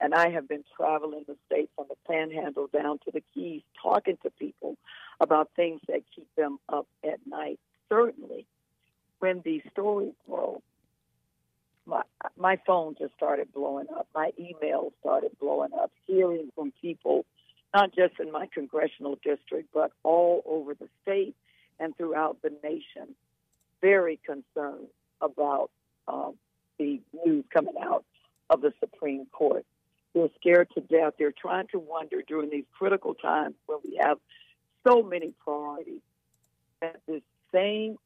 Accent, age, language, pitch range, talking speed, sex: American, 60-79, English, 150-200 Hz, 145 wpm, female